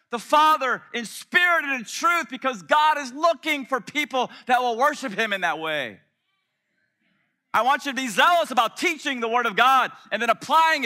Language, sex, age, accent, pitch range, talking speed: English, male, 30-49, American, 200-280 Hz, 195 wpm